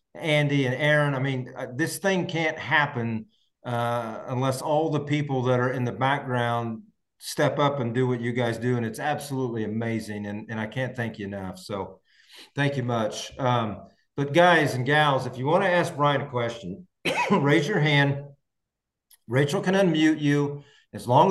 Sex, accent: male, American